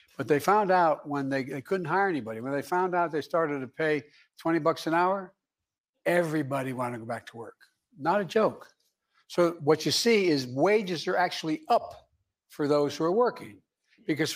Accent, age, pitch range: American, 60-79, 140-175 Hz